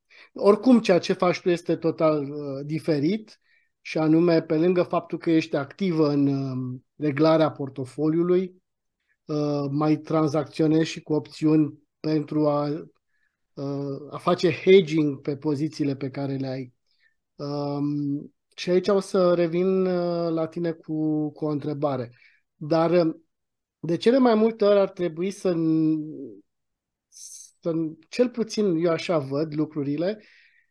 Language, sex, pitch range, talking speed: Romanian, male, 150-195 Hz, 120 wpm